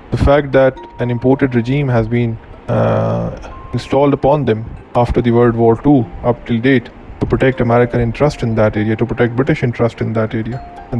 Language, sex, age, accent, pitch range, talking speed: English, male, 20-39, Indian, 115-125 Hz, 190 wpm